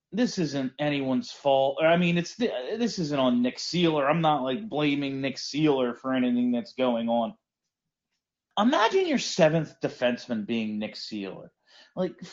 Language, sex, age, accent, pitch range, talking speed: English, male, 30-49, American, 130-195 Hz, 160 wpm